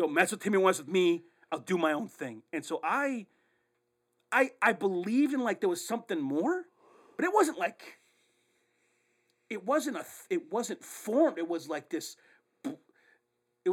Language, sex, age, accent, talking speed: English, male, 40-59, American, 170 wpm